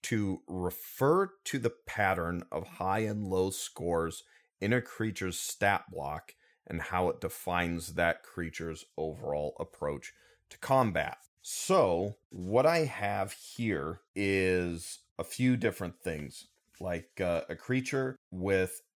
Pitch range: 85-110 Hz